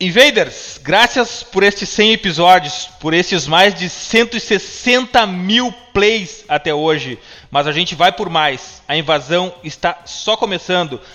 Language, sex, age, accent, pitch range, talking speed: Portuguese, male, 30-49, Brazilian, 165-210 Hz, 140 wpm